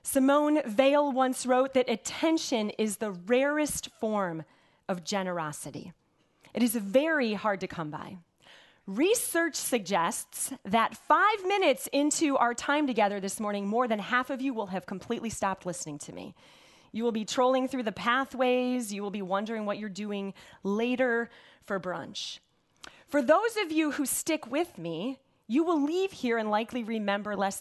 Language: English